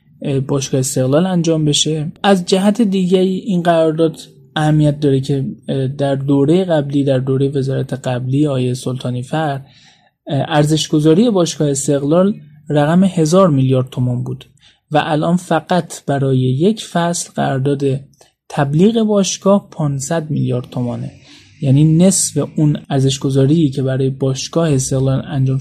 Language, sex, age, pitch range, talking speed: Persian, male, 20-39, 135-155 Hz, 120 wpm